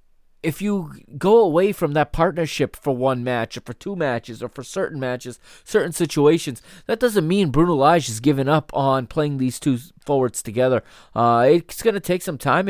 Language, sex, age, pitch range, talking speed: English, male, 20-39, 125-165 Hz, 195 wpm